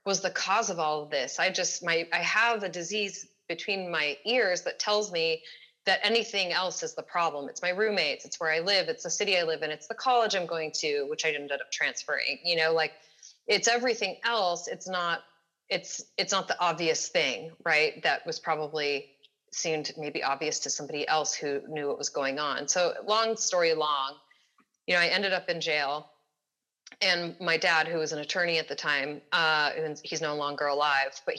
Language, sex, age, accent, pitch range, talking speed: English, female, 30-49, American, 150-190 Hz, 205 wpm